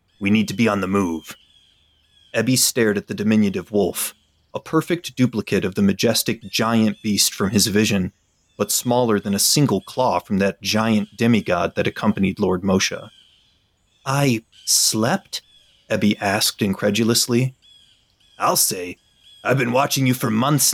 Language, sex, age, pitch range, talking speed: English, male, 30-49, 100-135 Hz, 150 wpm